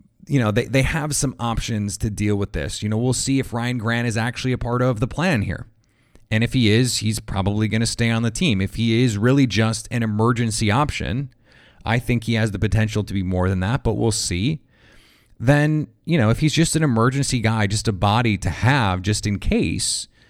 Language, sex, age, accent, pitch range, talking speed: English, male, 30-49, American, 110-130 Hz, 230 wpm